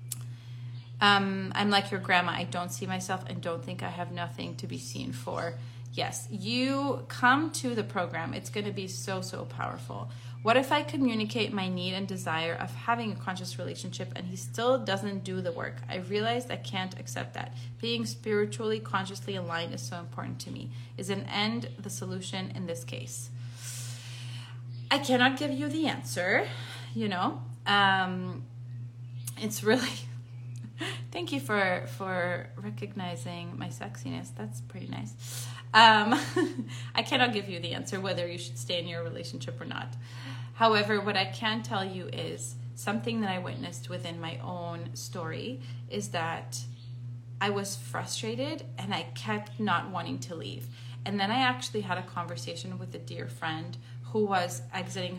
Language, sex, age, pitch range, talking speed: English, female, 30-49, 100-125 Hz, 165 wpm